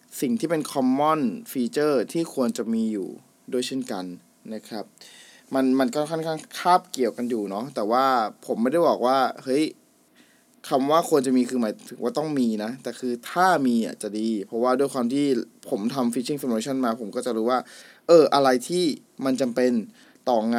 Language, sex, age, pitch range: Thai, male, 20-39, 120-150 Hz